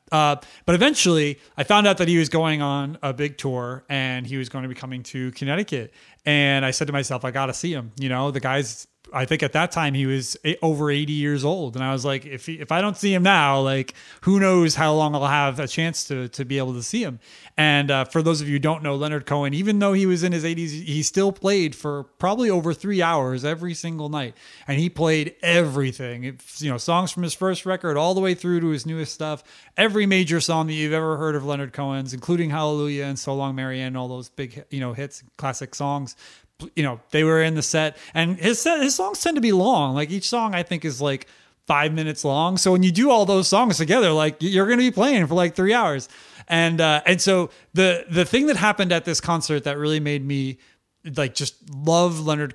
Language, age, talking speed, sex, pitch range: English, 30-49, 240 wpm, male, 140-175 Hz